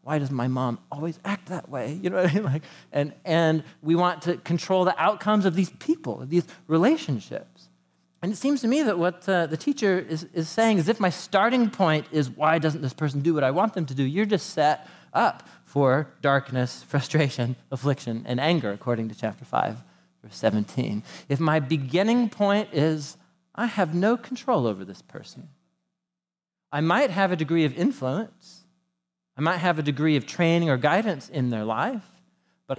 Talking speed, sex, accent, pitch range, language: 195 wpm, male, American, 145-200 Hz, English